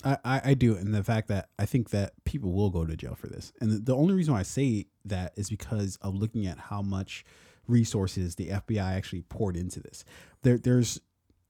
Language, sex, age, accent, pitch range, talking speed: English, male, 20-39, American, 95-140 Hz, 220 wpm